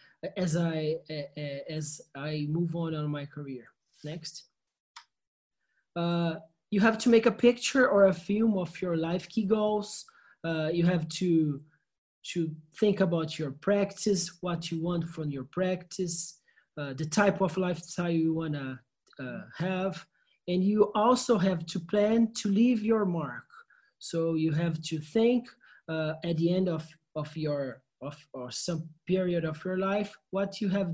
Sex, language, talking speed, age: male, English, 155 wpm, 20-39